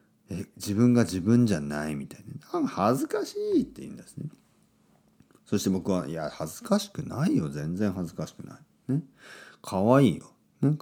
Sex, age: male, 40-59